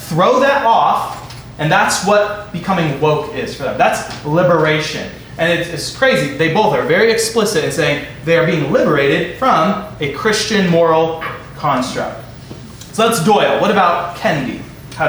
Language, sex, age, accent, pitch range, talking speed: English, male, 20-39, American, 150-195 Hz, 160 wpm